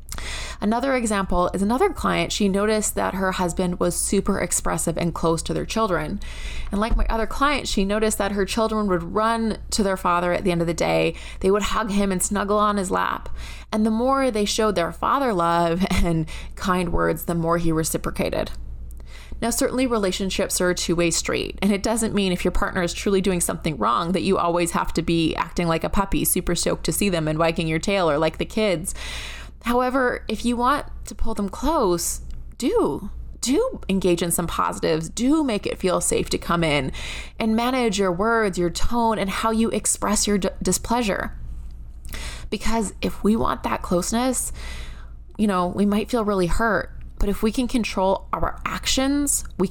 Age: 20-39